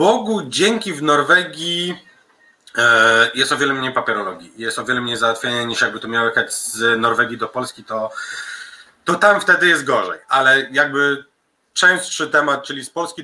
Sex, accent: male, native